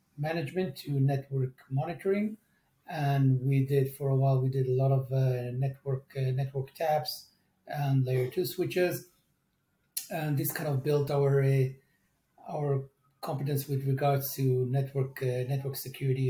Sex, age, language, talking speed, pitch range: male, 40-59, English, 145 wpm, 135-155 Hz